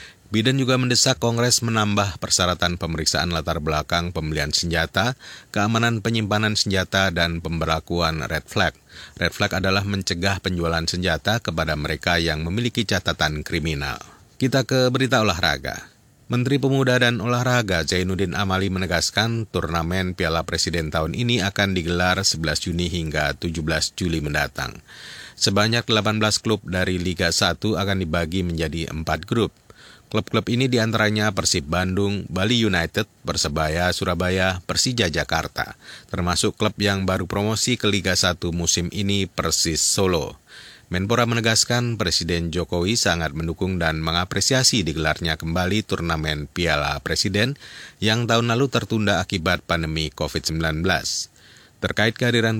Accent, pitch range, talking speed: native, 85-110 Hz, 125 wpm